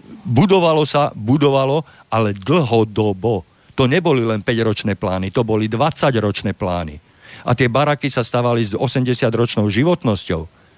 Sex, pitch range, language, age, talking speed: male, 100-140 Hz, Slovak, 50-69, 120 wpm